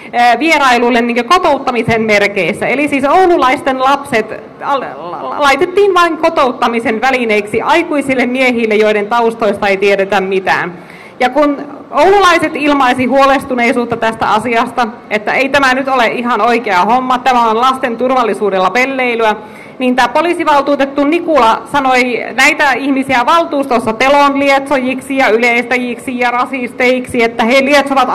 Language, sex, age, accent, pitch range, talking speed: Finnish, female, 30-49, native, 225-285 Hz, 115 wpm